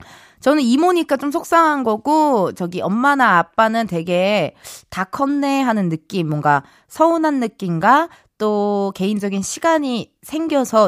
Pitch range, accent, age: 195-300 Hz, native, 20-39